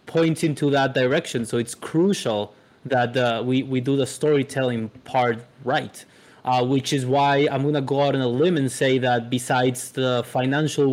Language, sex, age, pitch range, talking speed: English, male, 20-39, 120-140 Hz, 180 wpm